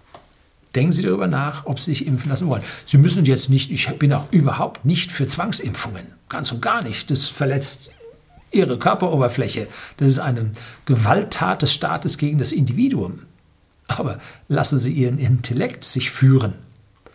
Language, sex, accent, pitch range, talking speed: German, male, German, 110-145 Hz, 160 wpm